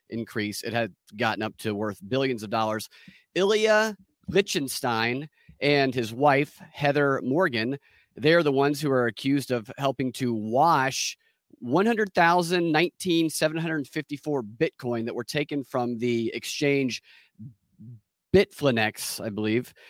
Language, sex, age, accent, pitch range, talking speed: English, male, 30-49, American, 120-165 Hz, 120 wpm